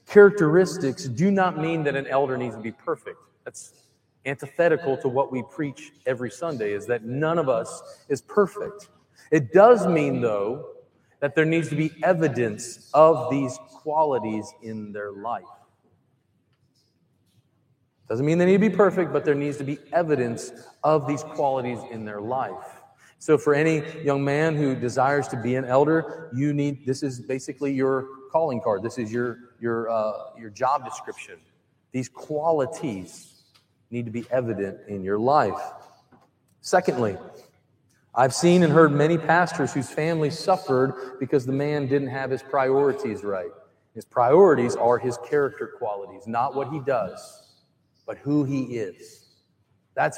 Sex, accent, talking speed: male, American, 155 wpm